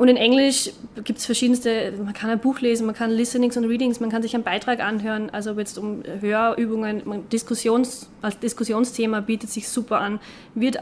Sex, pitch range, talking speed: female, 215-245 Hz, 200 wpm